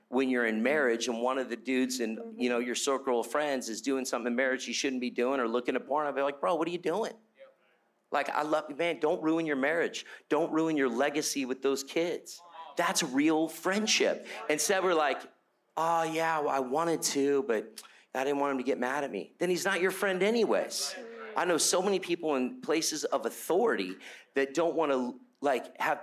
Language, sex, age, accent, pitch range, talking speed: English, male, 40-59, American, 130-175 Hz, 220 wpm